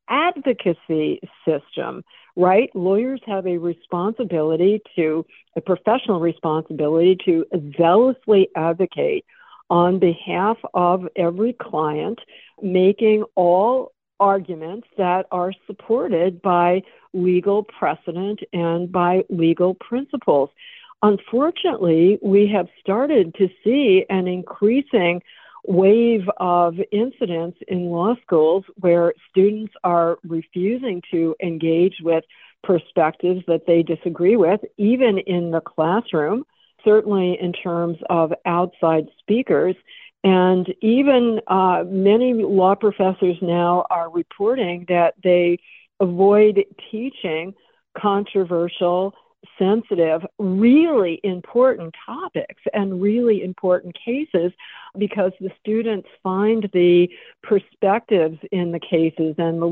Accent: American